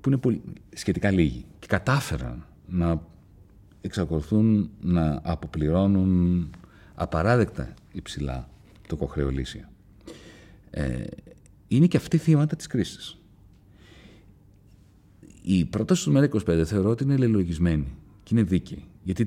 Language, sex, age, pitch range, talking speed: Greek, male, 40-59, 80-110 Hz, 110 wpm